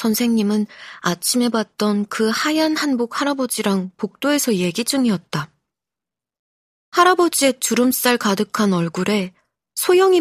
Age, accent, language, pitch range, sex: 20-39, native, Korean, 195-260 Hz, female